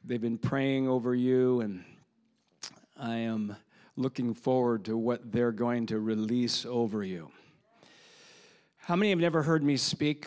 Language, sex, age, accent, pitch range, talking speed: English, male, 50-69, American, 120-140 Hz, 145 wpm